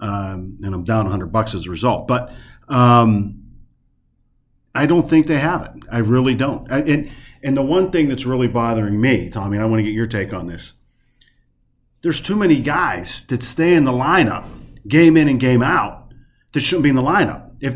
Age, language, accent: 40-59, English, American